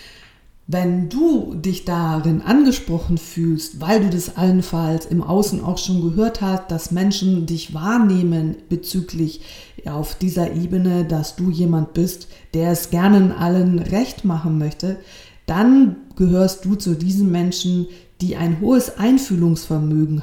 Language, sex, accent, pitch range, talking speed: German, female, German, 165-190 Hz, 135 wpm